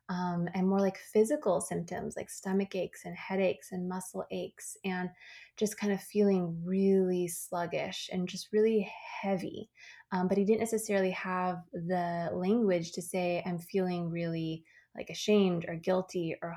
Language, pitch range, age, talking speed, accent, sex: English, 180-205 Hz, 20-39, 155 wpm, American, female